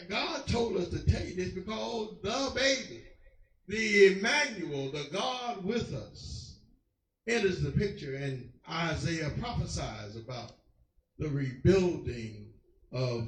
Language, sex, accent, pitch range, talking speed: English, male, American, 125-195 Hz, 115 wpm